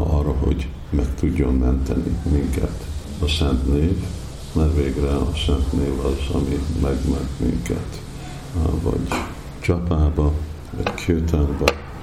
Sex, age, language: male, 50-69, Hungarian